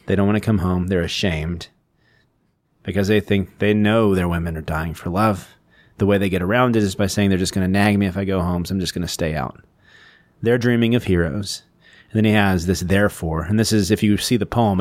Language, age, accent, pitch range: English, 30-49, American, 90-105 Hz